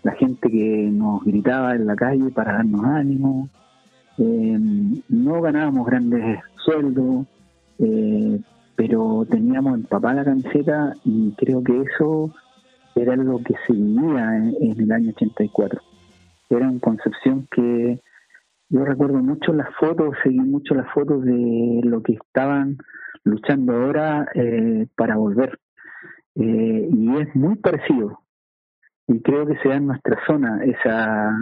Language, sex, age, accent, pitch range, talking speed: Spanish, male, 50-69, Argentinian, 115-165 Hz, 140 wpm